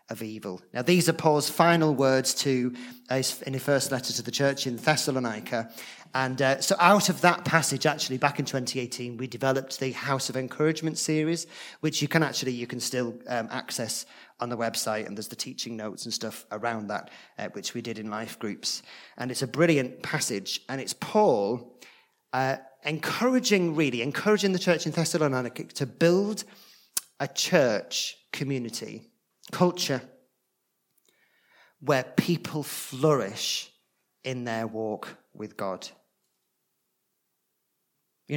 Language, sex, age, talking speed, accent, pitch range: English, male, 40-59, 150 wpm, British, 125-155 Hz